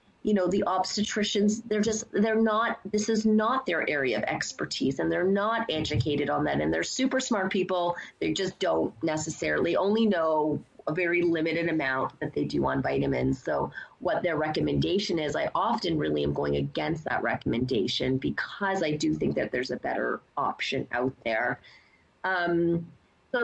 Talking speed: 165 wpm